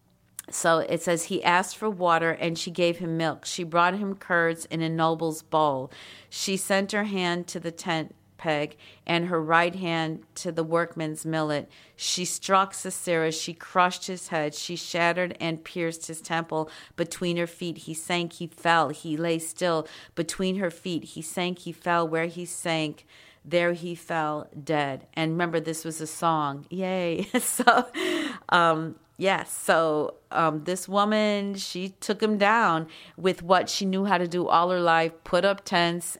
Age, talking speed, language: 50-69, 170 wpm, English